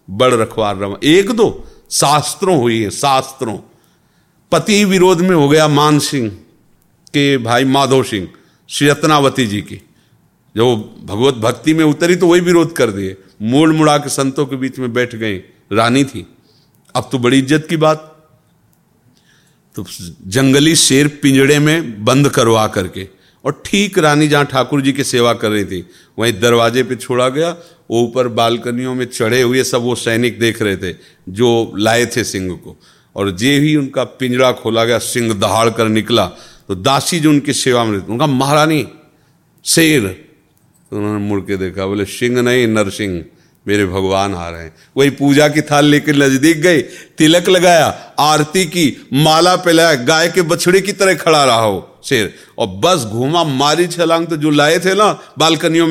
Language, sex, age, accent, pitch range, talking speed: Hindi, male, 50-69, native, 110-155 Hz, 165 wpm